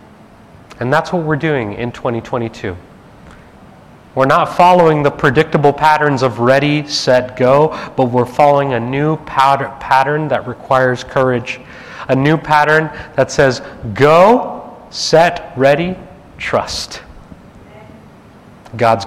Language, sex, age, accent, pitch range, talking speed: English, male, 30-49, American, 130-170 Hz, 115 wpm